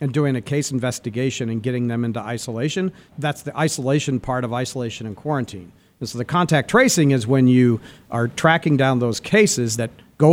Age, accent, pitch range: 50-69, American, 125-175 Hz